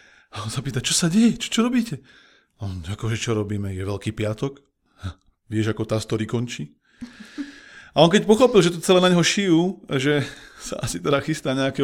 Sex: male